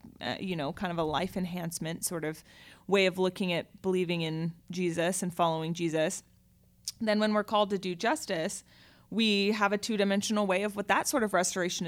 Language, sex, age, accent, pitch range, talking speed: English, female, 30-49, American, 170-195 Hz, 190 wpm